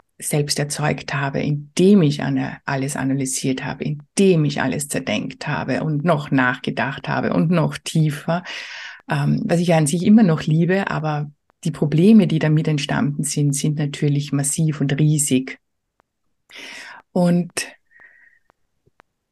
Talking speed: 125 wpm